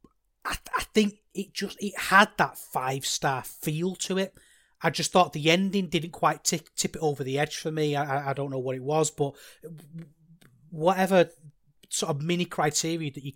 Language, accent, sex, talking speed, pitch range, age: English, British, male, 200 wpm, 130-175 Hz, 30-49